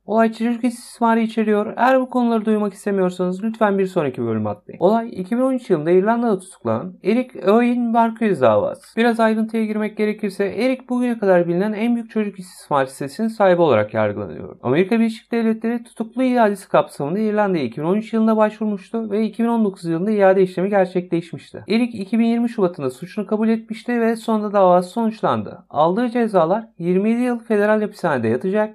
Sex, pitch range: male, 180-225 Hz